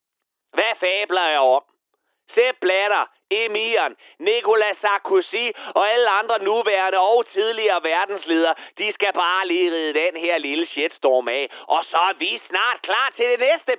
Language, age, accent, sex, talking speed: Danish, 30-49, native, male, 150 wpm